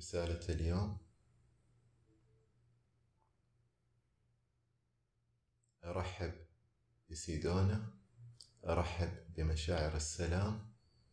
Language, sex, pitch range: Arabic, male, 85-115 Hz